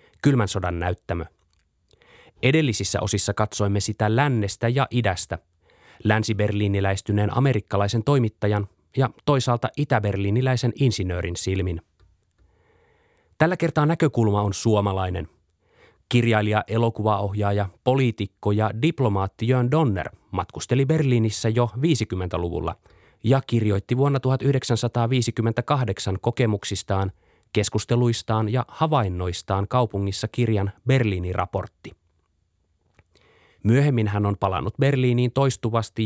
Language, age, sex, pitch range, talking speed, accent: Finnish, 30-49, male, 95-125 Hz, 85 wpm, native